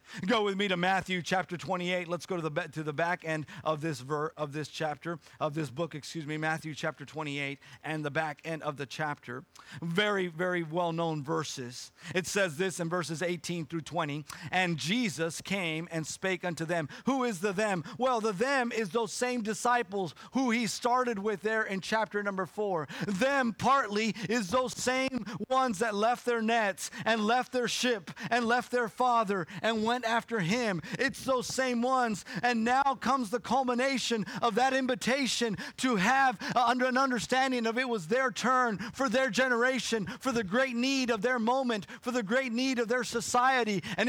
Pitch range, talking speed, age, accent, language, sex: 165-240 Hz, 185 wpm, 40-59, American, English, male